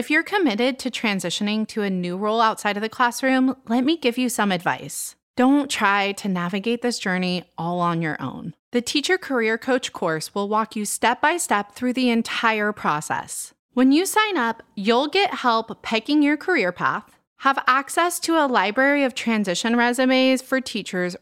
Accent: American